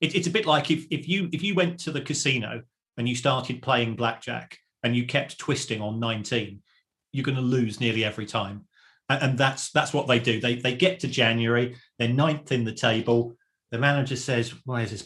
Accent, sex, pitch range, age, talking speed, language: British, male, 115-150 Hz, 40-59, 215 wpm, English